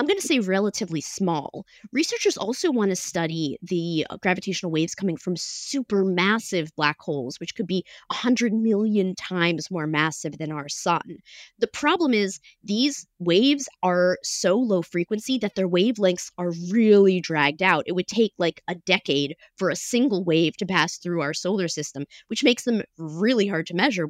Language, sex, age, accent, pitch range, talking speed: English, female, 20-39, American, 165-215 Hz, 170 wpm